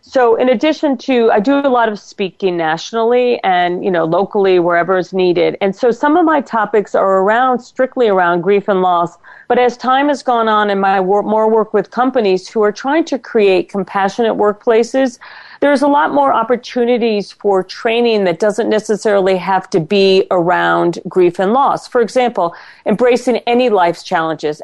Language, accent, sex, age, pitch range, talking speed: English, American, female, 40-59, 190-240 Hz, 180 wpm